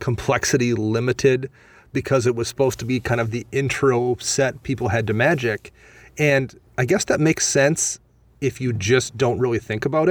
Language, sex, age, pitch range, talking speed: English, male, 30-49, 115-135 Hz, 180 wpm